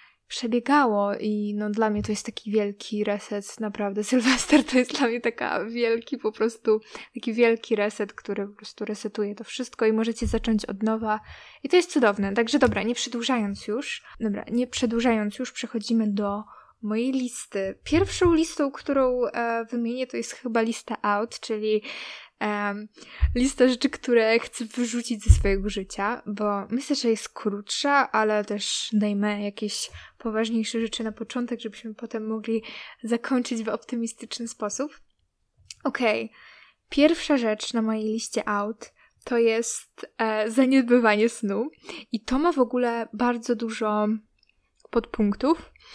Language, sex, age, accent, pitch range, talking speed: Polish, female, 10-29, native, 215-245 Hz, 140 wpm